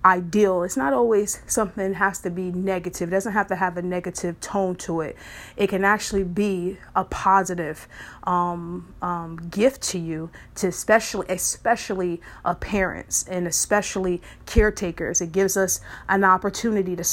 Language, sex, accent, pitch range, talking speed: English, female, American, 180-200 Hz, 150 wpm